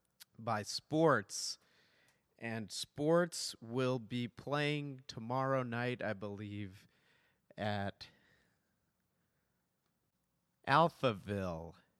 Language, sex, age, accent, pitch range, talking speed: English, male, 40-59, American, 110-130 Hz, 65 wpm